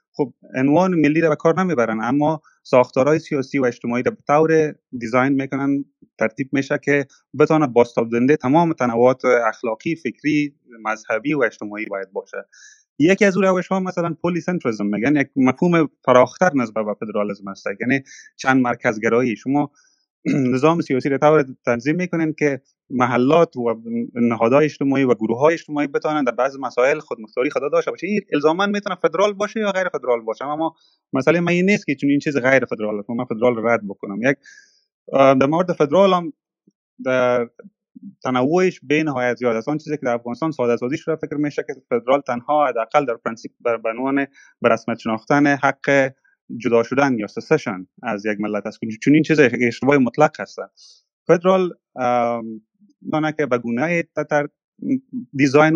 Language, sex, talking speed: Persian, male, 155 wpm